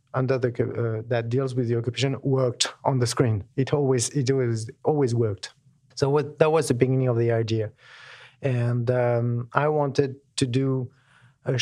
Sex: male